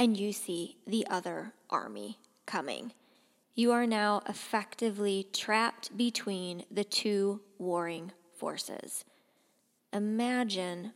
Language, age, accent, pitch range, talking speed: English, 20-39, American, 195-230 Hz, 100 wpm